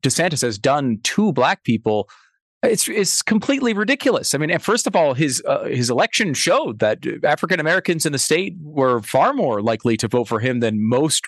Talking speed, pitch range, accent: 185 wpm, 130-190 Hz, American